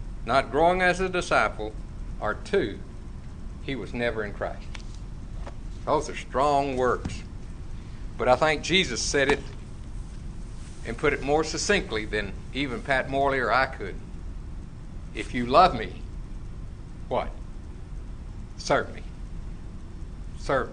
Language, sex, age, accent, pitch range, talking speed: English, male, 60-79, American, 95-155 Hz, 120 wpm